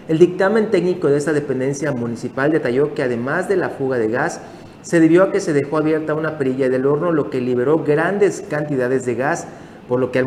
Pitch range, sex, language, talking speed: 130-155 Hz, male, Spanish, 215 wpm